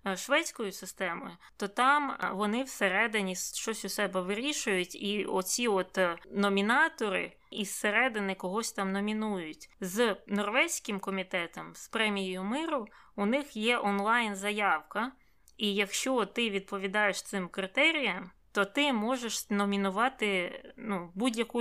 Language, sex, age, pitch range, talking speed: Ukrainian, female, 20-39, 195-230 Hz, 115 wpm